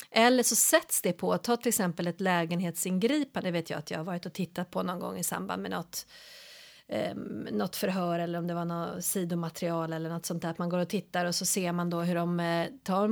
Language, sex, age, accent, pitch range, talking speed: Swedish, female, 30-49, native, 175-205 Hz, 240 wpm